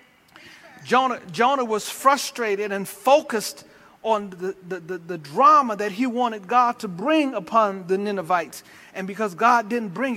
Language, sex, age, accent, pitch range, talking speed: English, male, 40-59, American, 220-295 Hz, 155 wpm